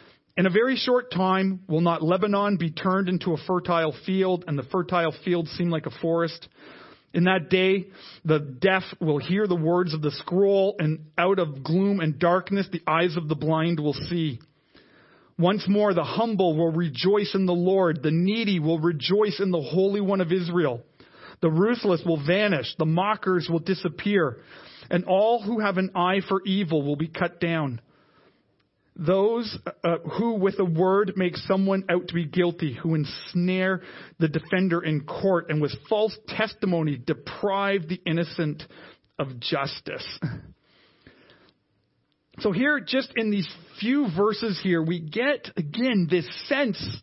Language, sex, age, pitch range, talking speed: English, male, 40-59, 160-195 Hz, 160 wpm